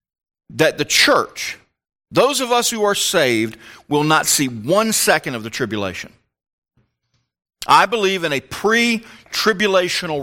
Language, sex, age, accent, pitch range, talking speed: English, male, 40-59, American, 125-190 Hz, 130 wpm